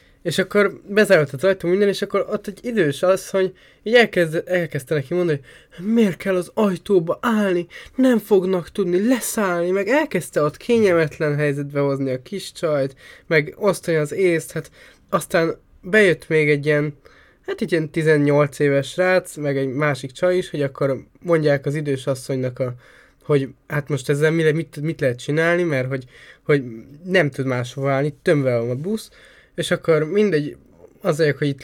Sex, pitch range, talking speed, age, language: male, 140-185 Hz, 170 wpm, 20-39, Hungarian